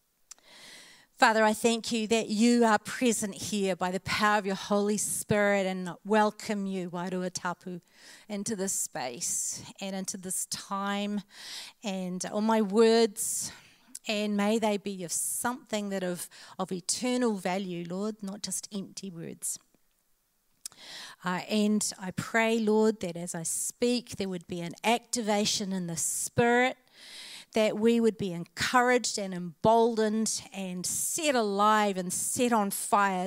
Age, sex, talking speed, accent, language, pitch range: 40-59, female, 140 wpm, Australian, English, 185-220 Hz